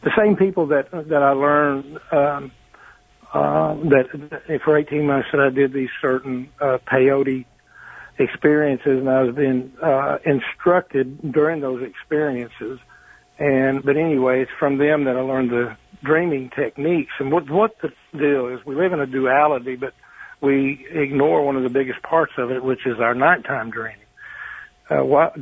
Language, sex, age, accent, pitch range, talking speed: English, male, 60-79, American, 130-150 Hz, 165 wpm